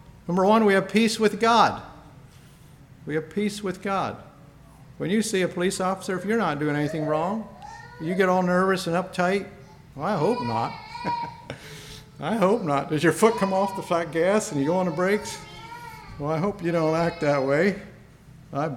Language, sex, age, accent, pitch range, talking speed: English, male, 50-69, American, 145-195 Hz, 190 wpm